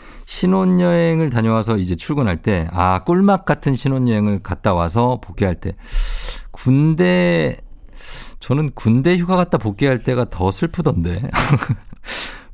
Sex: male